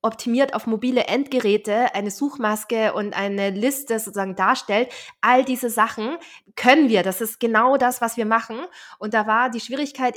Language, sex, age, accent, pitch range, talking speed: German, female, 20-39, German, 195-230 Hz, 165 wpm